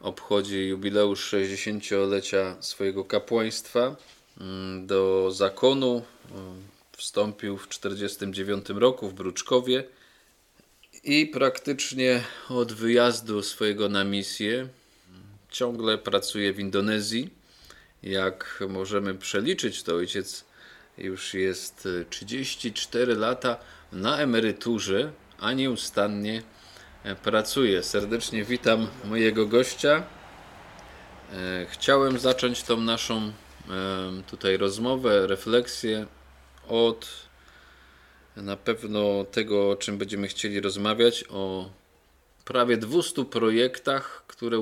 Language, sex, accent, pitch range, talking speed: Polish, male, native, 95-120 Hz, 85 wpm